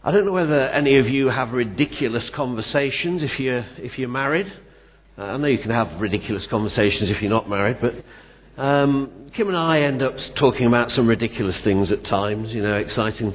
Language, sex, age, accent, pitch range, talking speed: English, male, 50-69, British, 115-150 Hz, 195 wpm